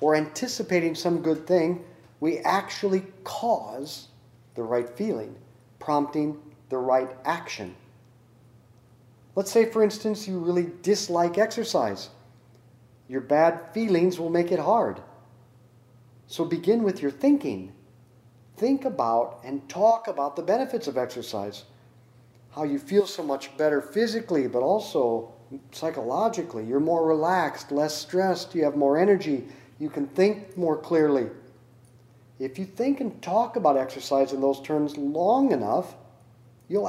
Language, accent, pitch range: English, American, 125-175 Hz